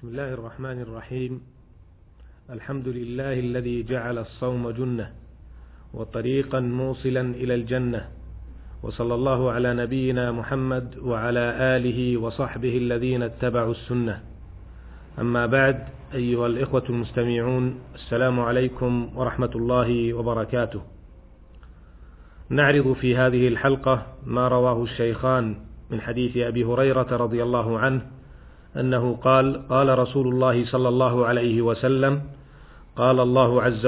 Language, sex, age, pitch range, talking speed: Arabic, male, 40-59, 115-130 Hz, 110 wpm